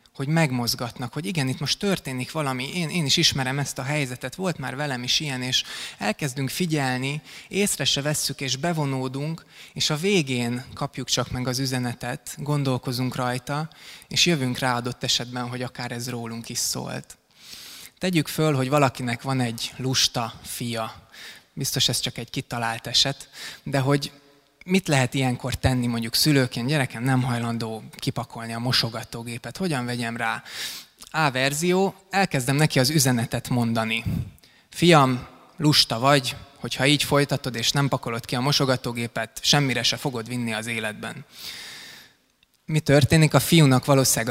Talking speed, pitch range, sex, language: 150 wpm, 120-145 Hz, male, Hungarian